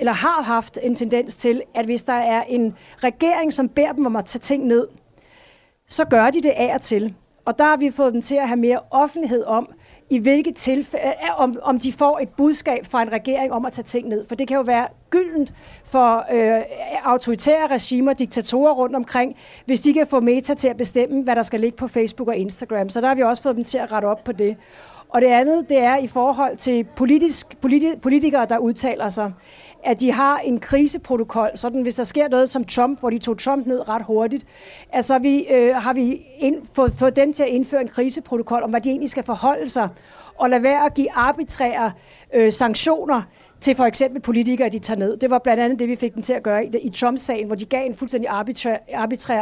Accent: native